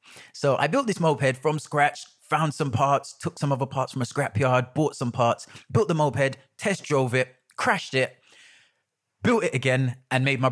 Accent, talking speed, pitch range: British, 195 wpm, 120-150 Hz